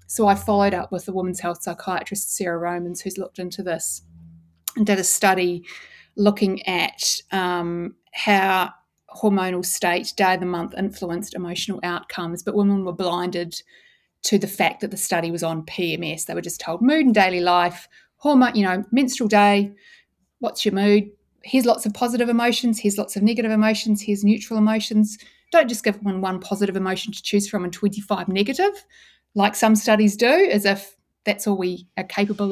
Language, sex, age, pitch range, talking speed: English, female, 30-49, 180-215 Hz, 180 wpm